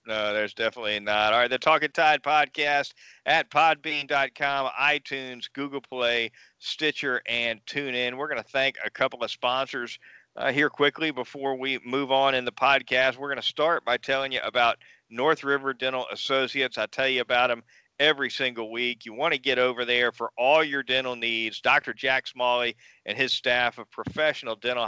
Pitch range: 120-140 Hz